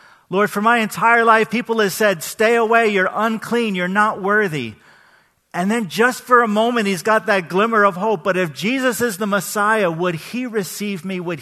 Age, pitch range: 40-59, 180-235 Hz